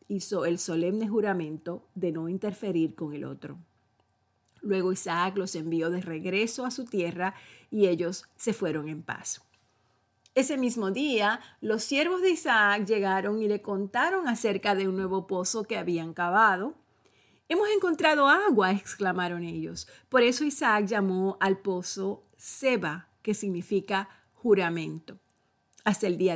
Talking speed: 140 wpm